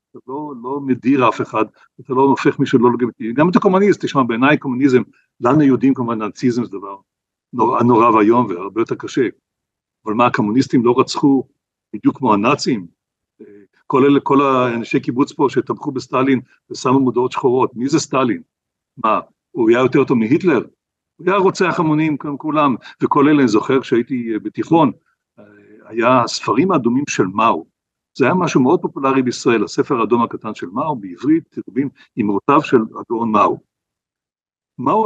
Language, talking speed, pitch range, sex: Hebrew, 155 wpm, 125-190 Hz, male